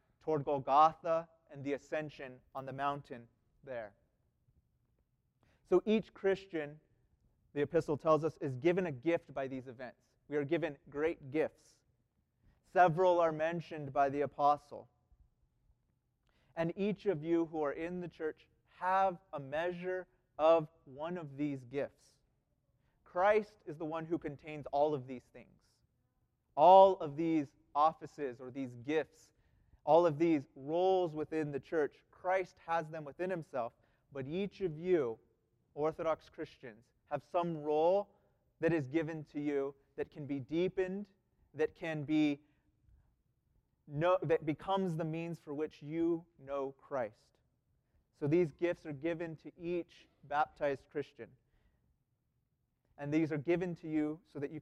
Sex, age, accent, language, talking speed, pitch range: male, 30-49, American, English, 140 wpm, 140-170 Hz